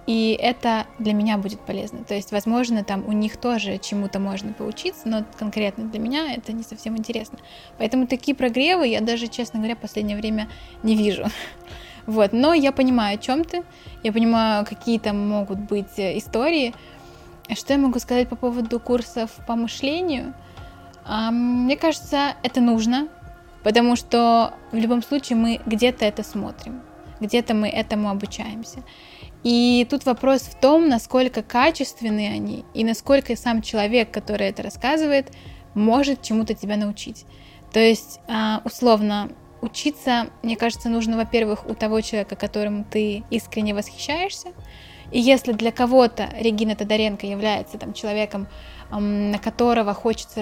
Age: 20-39